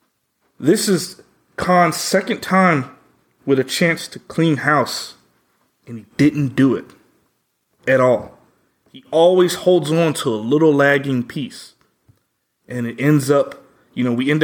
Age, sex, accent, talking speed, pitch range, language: 30-49, male, American, 145 wpm, 125-160 Hz, English